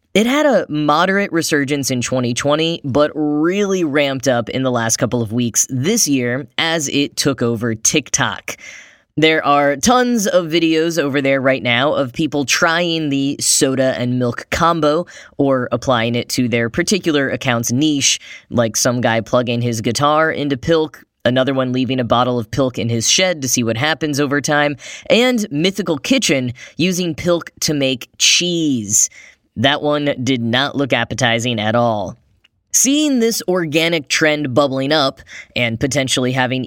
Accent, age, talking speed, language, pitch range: American, 10-29, 160 wpm, English, 125-160 Hz